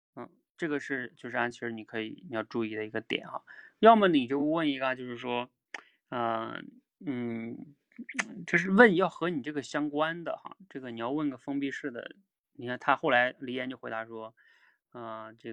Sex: male